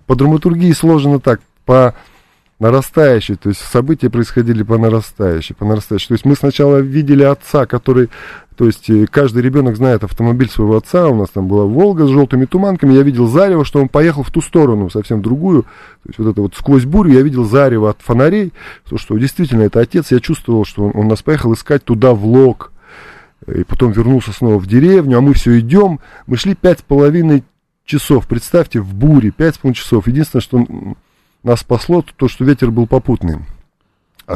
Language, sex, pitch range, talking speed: Russian, male, 110-145 Hz, 185 wpm